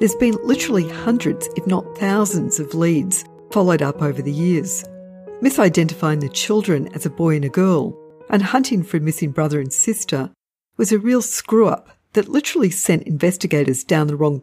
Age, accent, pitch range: 50-69, Australian, 155-210 Hz